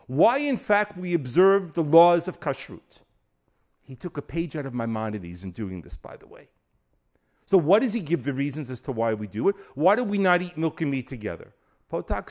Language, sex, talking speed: English, male, 220 wpm